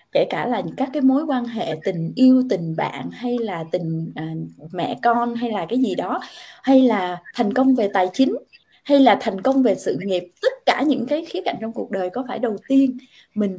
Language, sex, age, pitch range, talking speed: Vietnamese, female, 20-39, 190-260 Hz, 220 wpm